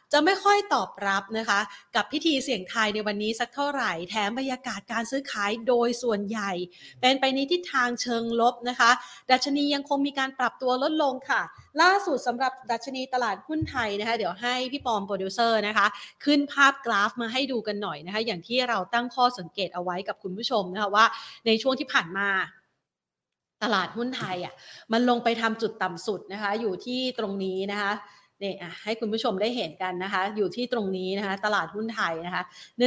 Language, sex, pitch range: Thai, female, 200-255 Hz